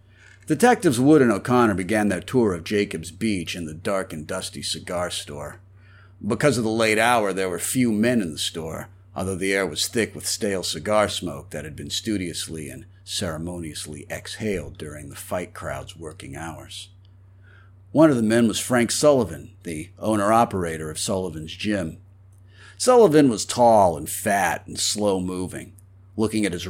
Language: English